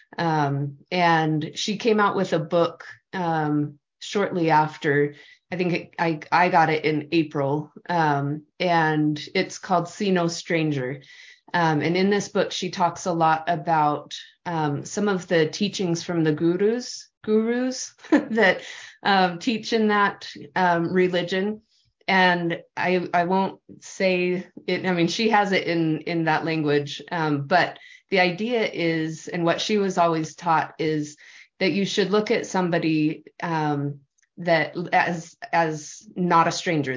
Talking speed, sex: 150 wpm, female